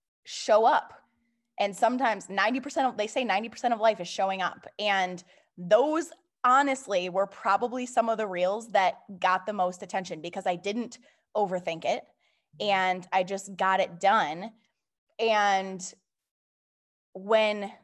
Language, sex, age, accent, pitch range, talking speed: English, female, 20-39, American, 185-225 Hz, 140 wpm